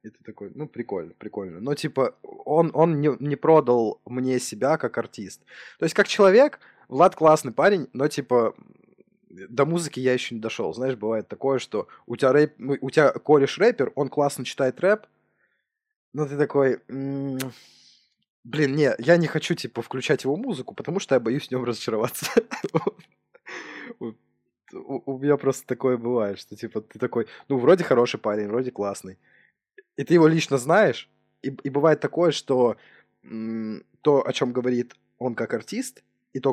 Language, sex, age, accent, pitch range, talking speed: Russian, male, 20-39, native, 110-145 Hz, 160 wpm